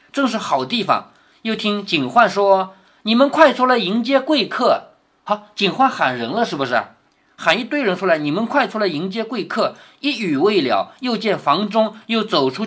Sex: male